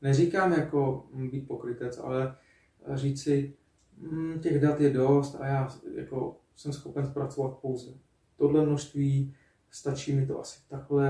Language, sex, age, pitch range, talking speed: Czech, male, 30-49, 120-140 Hz, 130 wpm